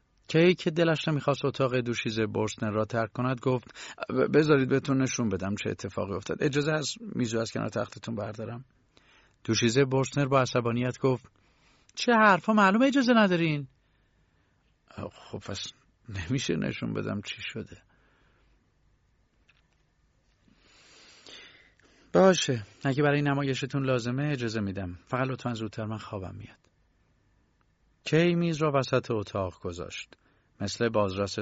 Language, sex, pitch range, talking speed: Persian, male, 100-130 Hz, 120 wpm